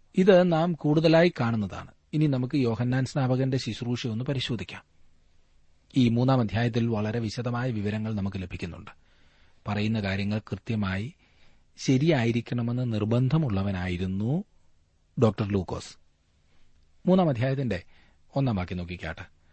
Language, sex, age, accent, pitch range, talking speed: Malayalam, male, 40-59, native, 85-130 Hz, 75 wpm